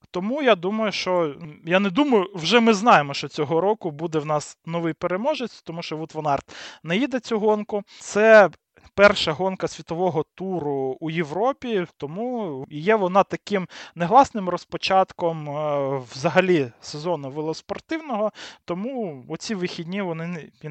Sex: male